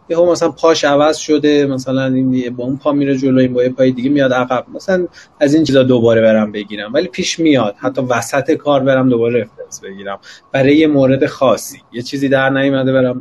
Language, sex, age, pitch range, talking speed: Persian, male, 30-49, 130-175 Hz, 200 wpm